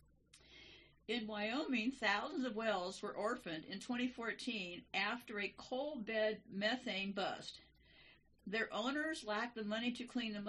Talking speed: 125 wpm